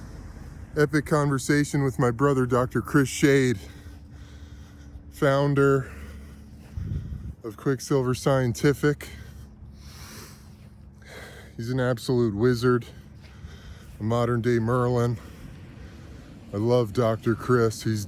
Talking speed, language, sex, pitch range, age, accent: 85 wpm, English, male, 105-140 Hz, 20-39, American